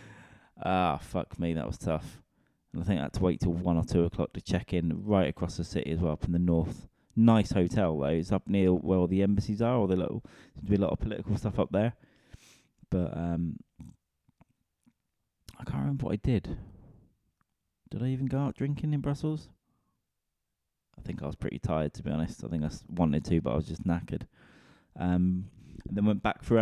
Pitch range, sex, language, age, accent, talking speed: 90-115 Hz, male, English, 20-39, British, 215 wpm